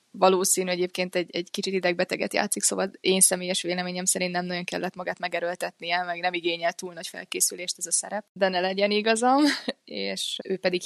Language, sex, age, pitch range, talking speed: Hungarian, female, 20-39, 170-190 Hz, 180 wpm